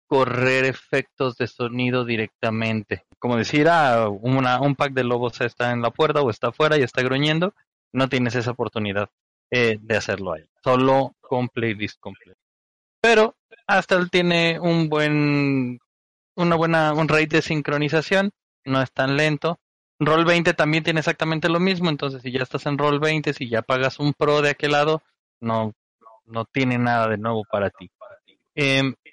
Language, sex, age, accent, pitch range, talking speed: Spanish, male, 20-39, Mexican, 120-155 Hz, 165 wpm